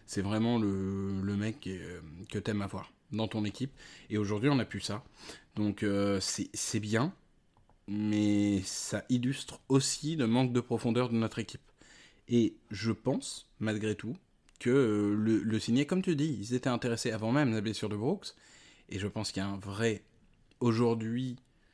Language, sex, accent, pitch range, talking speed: French, male, French, 100-120 Hz, 175 wpm